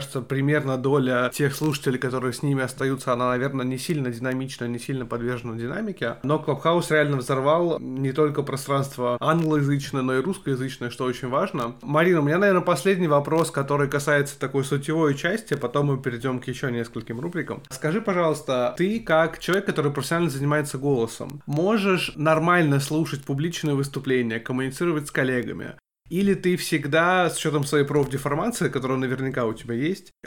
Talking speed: 155 wpm